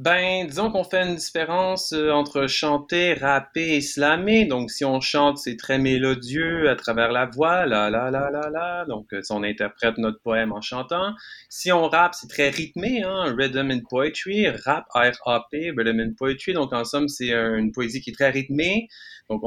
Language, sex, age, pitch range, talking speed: English, male, 30-49, 120-150 Hz, 190 wpm